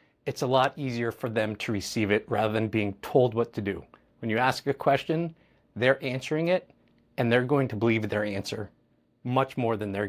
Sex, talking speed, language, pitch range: male, 210 wpm, English, 115-150 Hz